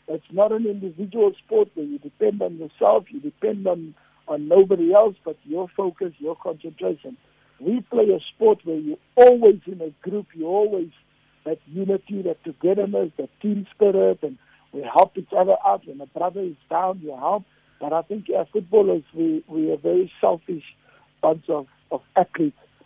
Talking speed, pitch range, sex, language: 180 wpm, 160-215 Hz, male, English